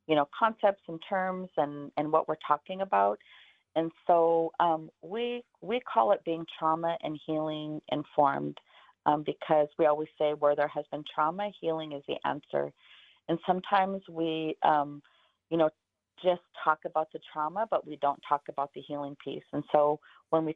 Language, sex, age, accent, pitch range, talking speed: English, female, 40-59, American, 140-165 Hz, 175 wpm